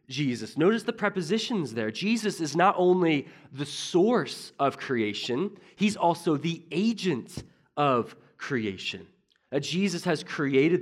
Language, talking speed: English, 130 wpm